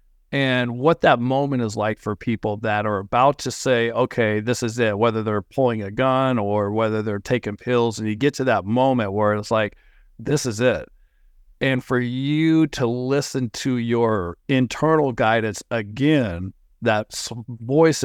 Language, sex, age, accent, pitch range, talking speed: English, male, 50-69, American, 105-130 Hz, 170 wpm